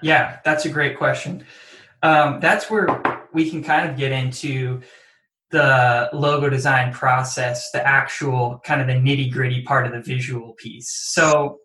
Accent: American